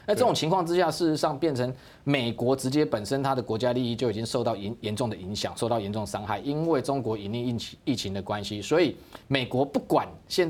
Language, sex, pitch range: Chinese, male, 115-145 Hz